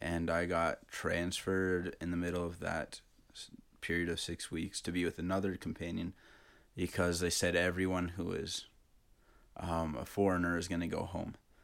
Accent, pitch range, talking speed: American, 85-95 Hz, 165 wpm